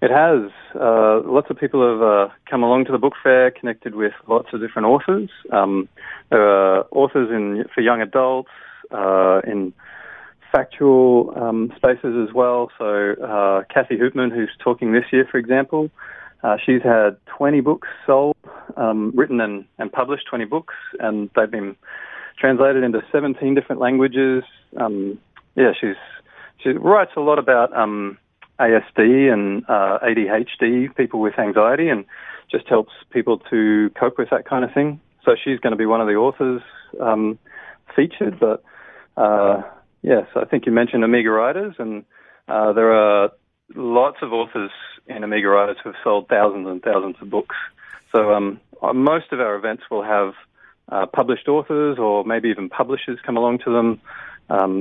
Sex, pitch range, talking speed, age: male, 105-130 Hz, 165 wpm, 30-49